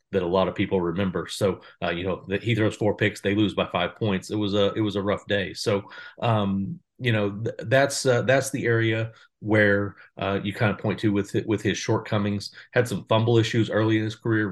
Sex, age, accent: male, 40-59, American